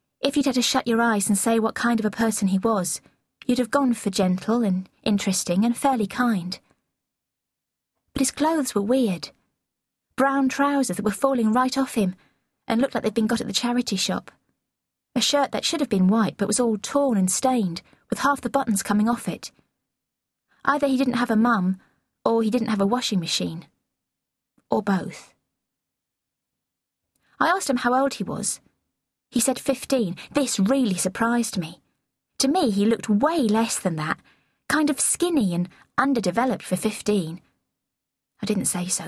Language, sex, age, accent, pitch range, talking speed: English, female, 20-39, British, 200-265 Hz, 180 wpm